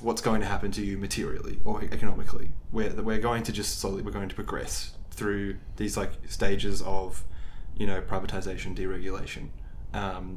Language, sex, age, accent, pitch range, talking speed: English, male, 20-39, Australian, 95-110 Hz, 170 wpm